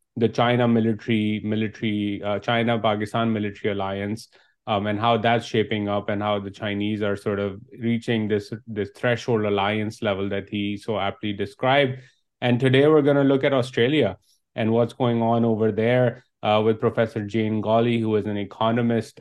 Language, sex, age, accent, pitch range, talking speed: English, male, 30-49, Indian, 105-120 Hz, 175 wpm